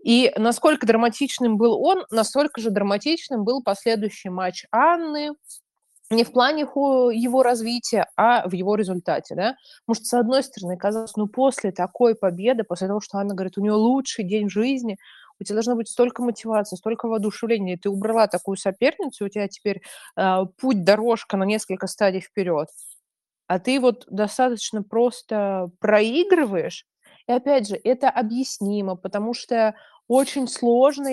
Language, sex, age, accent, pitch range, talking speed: Russian, female, 20-39, native, 200-245 Hz, 155 wpm